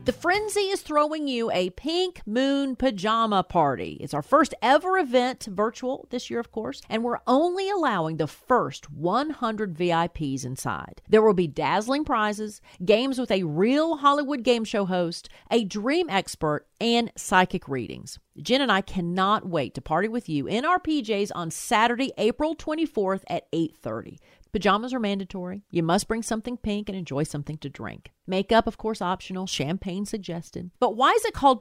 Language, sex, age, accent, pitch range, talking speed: English, female, 40-59, American, 170-255 Hz, 170 wpm